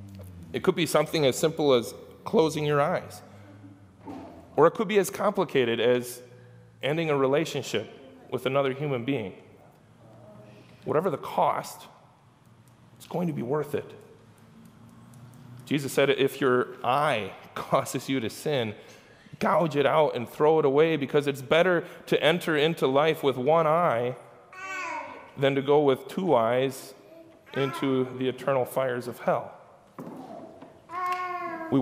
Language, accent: English, American